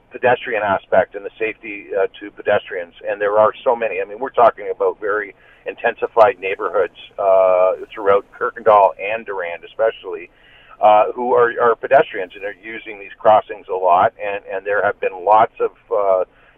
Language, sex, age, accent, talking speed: English, male, 50-69, American, 170 wpm